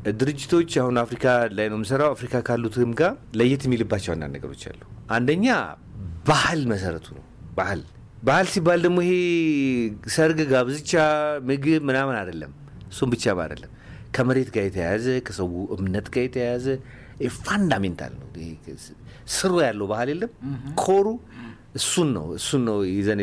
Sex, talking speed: male, 120 wpm